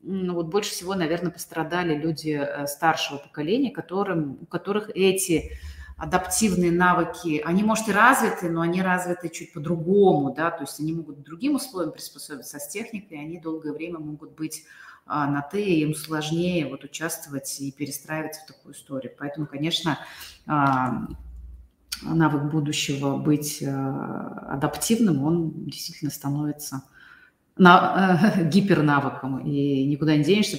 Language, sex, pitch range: Russian, female, 140-170 Hz